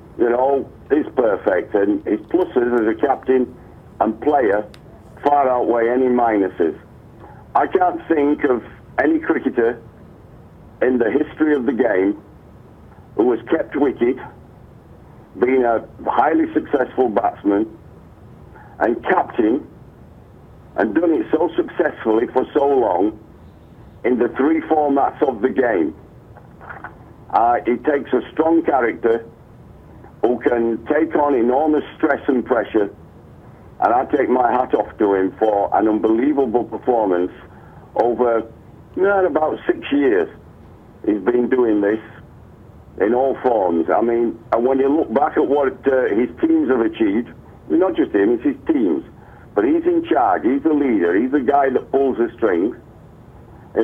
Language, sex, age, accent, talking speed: English, male, 60-79, British, 140 wpm